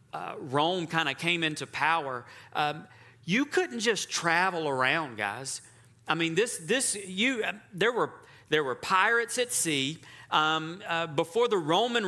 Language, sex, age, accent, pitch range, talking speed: English, male, 40-59, American, 135-195 Hz, 160 wpm